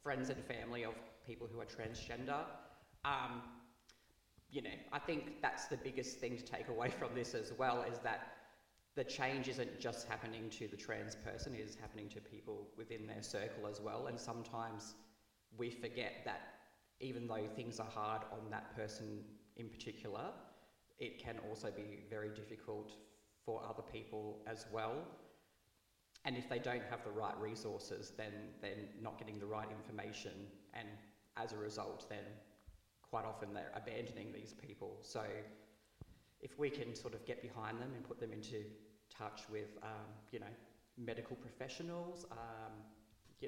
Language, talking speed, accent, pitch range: English, 165 wpm, Australian, 105-120 Hz